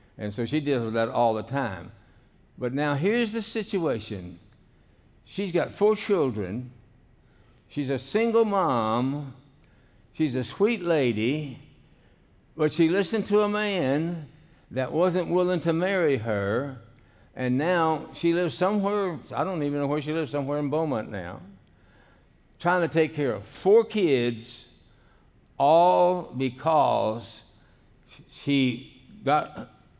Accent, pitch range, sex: American, 115-165 Hz, male